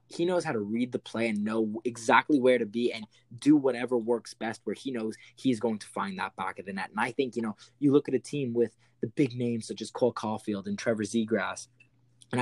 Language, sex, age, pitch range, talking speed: English, male, 20-39, 110-130 Hz, 250 wpm